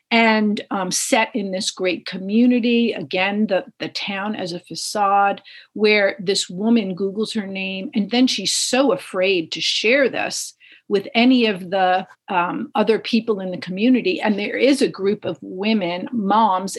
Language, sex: English, female